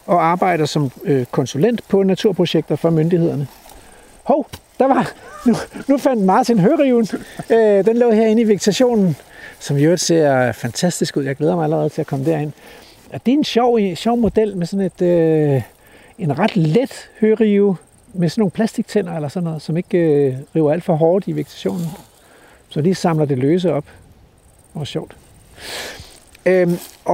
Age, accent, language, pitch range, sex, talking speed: 60-79, native, Danish, 150-205 Hz, male, 175 wpm